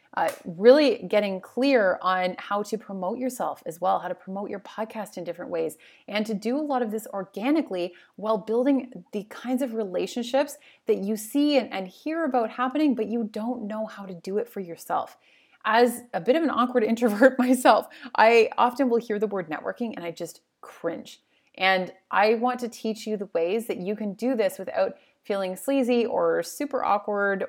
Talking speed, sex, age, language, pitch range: 195 wpm, female, 30-49, English, 190-250 Hz